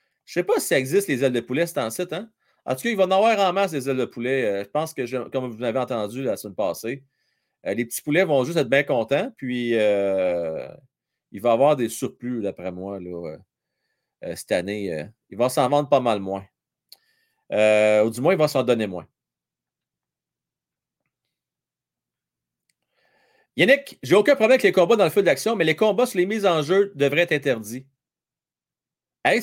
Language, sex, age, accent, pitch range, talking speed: French, male, 40-59, Canadian, 115-185 Hz, 210 wpm